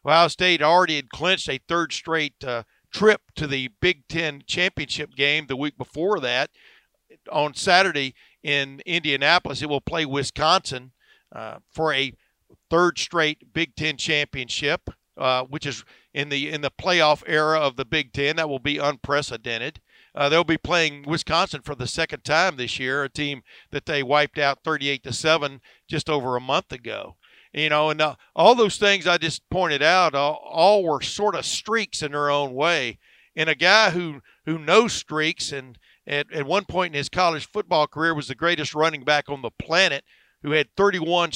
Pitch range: 140-170 Hz